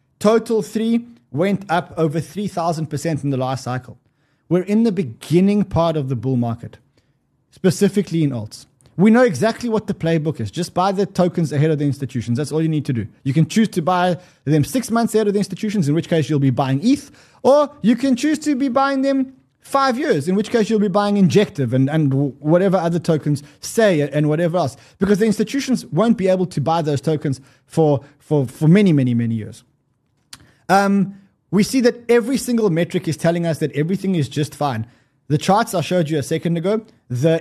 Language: English